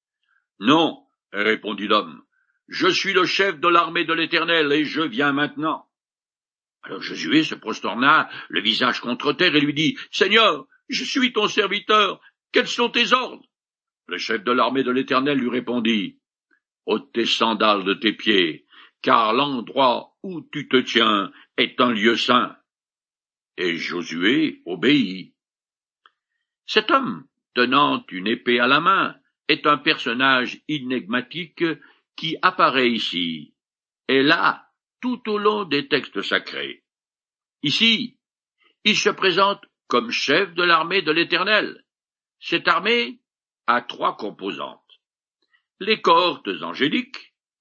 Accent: French